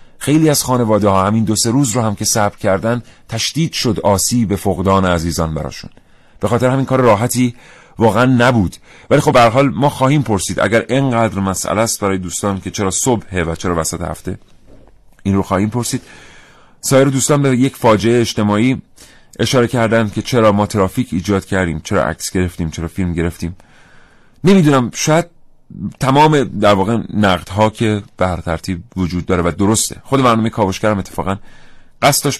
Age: 30-49